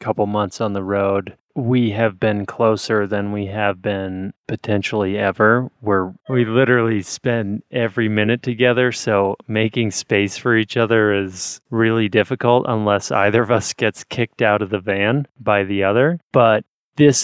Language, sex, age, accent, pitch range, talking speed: English, male, 30-49, American, 100-120 Hz, 155 wpm